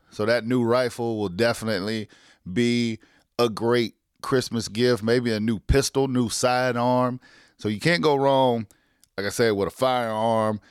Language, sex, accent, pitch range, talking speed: English, male, American, 105-125 Hz, 155 wpm